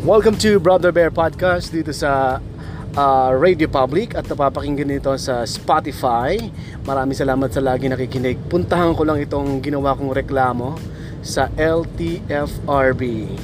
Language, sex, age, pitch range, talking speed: Filipino, male, 20-39, 130-160 Hz, 130 wpm